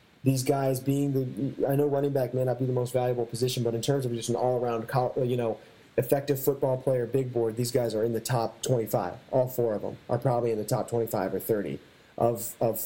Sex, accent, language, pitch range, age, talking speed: male, American, English, 105-125 Hz, 30-49, 230 wpm